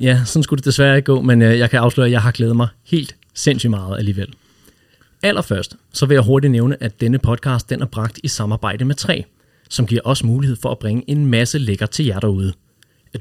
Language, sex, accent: Danish, male, native